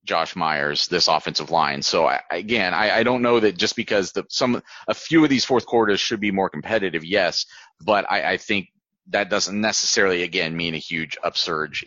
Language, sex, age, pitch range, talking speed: English, male, 30-49, 105-140 Hz, 200 wpm